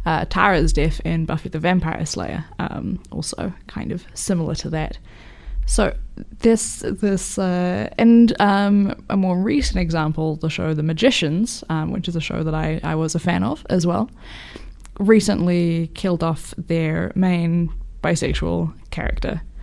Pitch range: 160-205 Hz